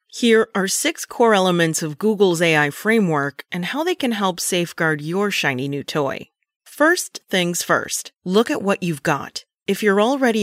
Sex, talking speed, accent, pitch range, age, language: female, 175 wpm, American, 155-205 Hz, 30-49, English